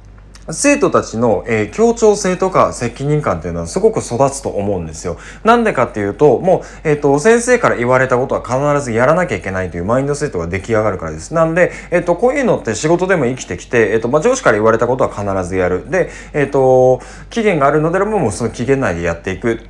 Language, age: Japanese, 20-39